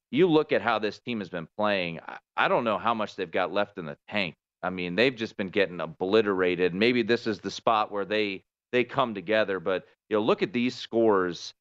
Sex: male